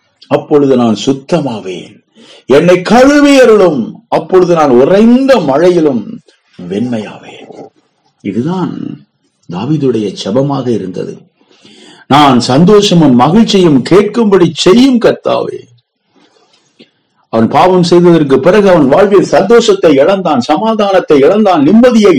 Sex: male